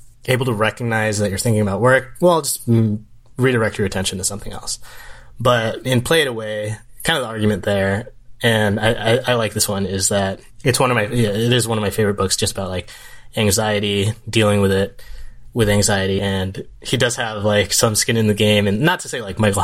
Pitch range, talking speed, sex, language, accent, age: 100-115 Hz, 220 wpm, male, English, American, 20-39